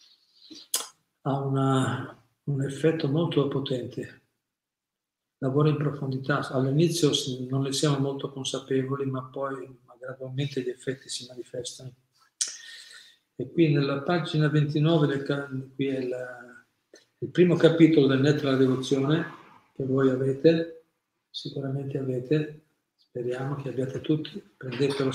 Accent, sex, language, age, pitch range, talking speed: native, male, Italian, 50-69, 130-155 Hz, 115 wpm